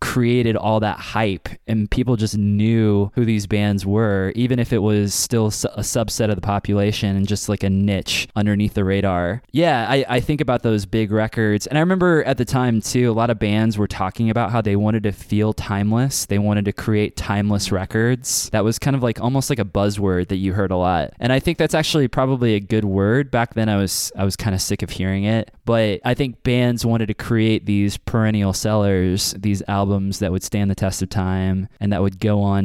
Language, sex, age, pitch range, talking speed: English, male, 20-39, 100-115 Hz, 225 wpm